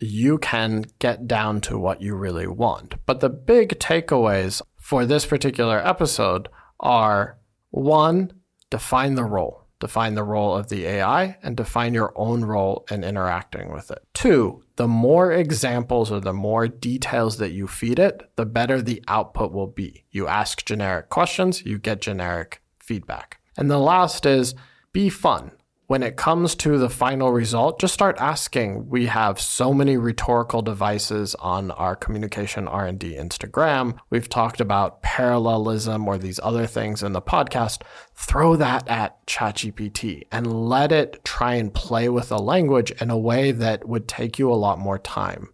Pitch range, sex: 105-130 Hz, male